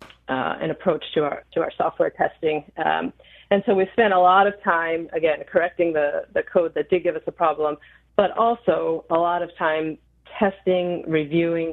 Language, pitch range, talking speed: English, 155-180 Hz, 190 wpm